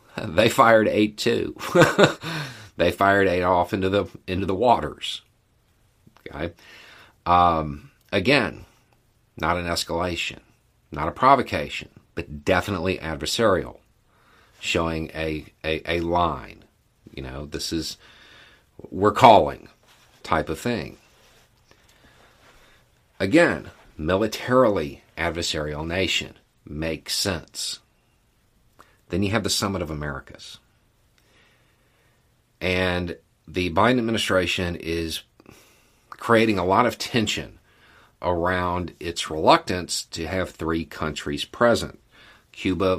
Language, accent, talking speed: English, American, 100 wpm